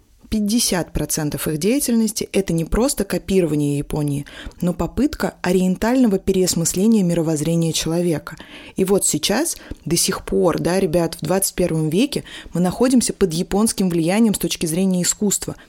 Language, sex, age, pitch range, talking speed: Russian, female, 20-39, 165-210 Hz, 135 wpm